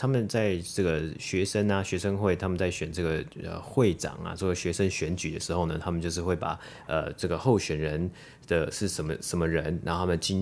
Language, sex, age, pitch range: Chinese, male, 30-49, 85-100 Hz